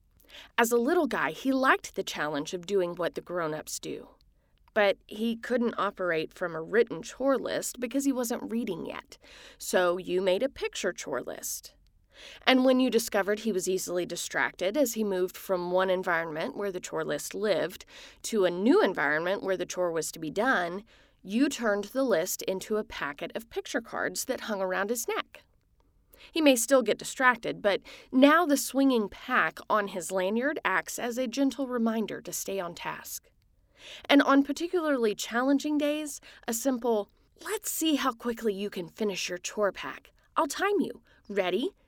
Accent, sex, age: American, female, 30-49